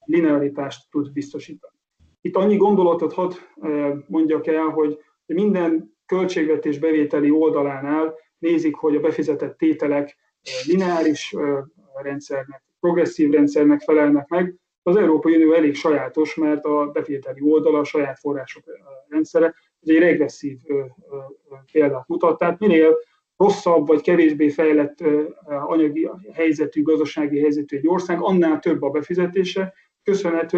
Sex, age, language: male, 30-49, Hungarian